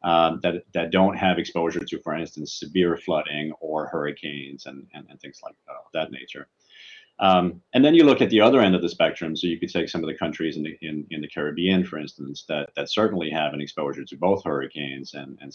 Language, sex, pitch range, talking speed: English, male, 75-90 Hz, 230 wpm